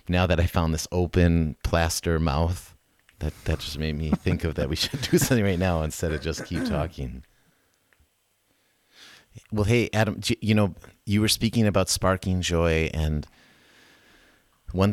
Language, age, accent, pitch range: English, 30-49, American, 90-130 Hz